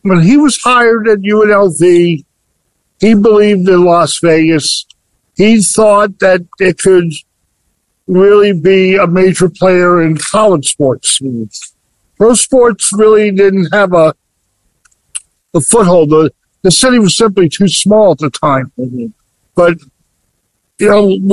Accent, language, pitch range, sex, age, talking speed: American, English, 160-205 Hz, male, 60-79, 125 wpm